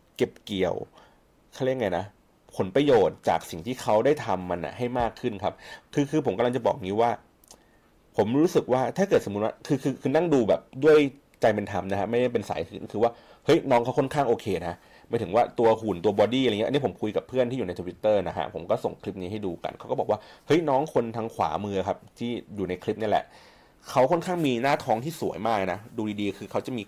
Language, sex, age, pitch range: Thai, male, 30-49, 100-140 Hz